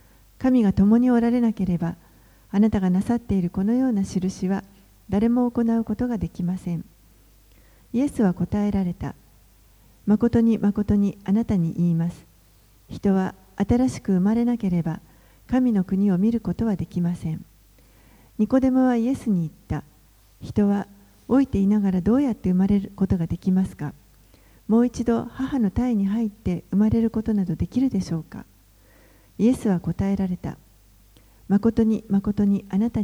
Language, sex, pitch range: Japanese, female, 170-225 Hz